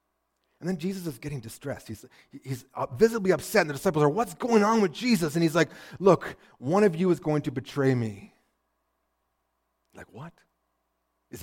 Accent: American